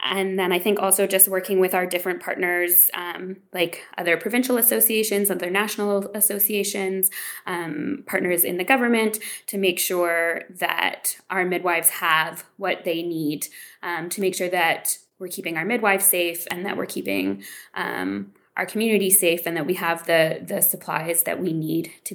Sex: female